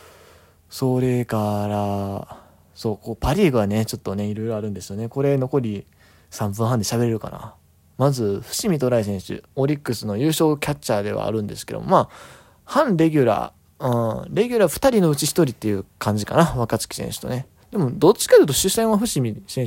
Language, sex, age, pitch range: Japanese, male, 20-39, 105-140 Hz